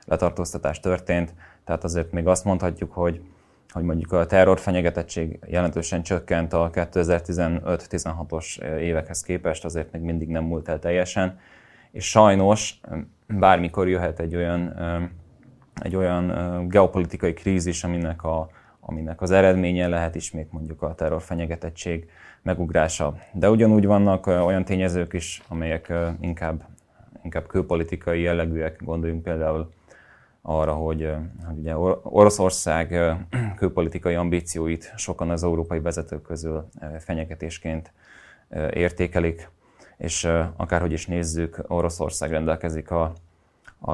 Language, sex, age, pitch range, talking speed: Hungarian, male, 20-39, 80-90 Hz, 110 wpm